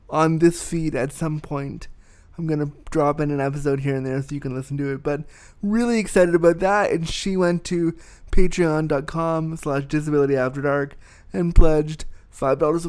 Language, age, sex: English, 20-39, male